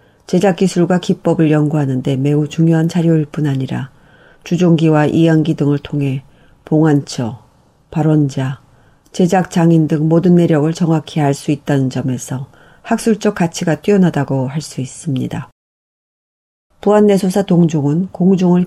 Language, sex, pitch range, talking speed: English, female, 145-180 Hz, 105 wpm